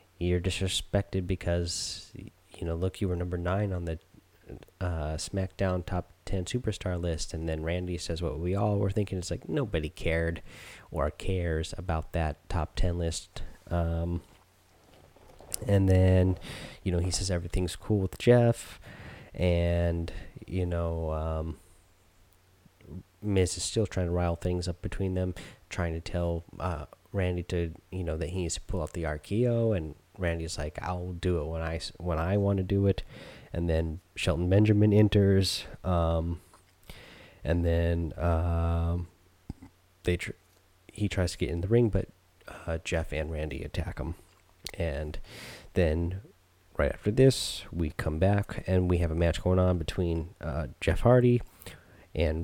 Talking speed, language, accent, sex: 160 wpm, English, American, male